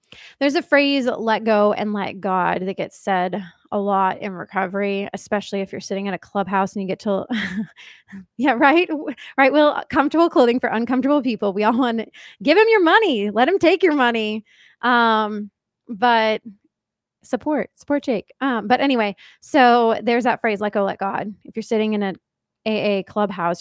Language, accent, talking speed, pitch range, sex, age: English, American, 180 wpm, 200-245 Hz, female, 20-39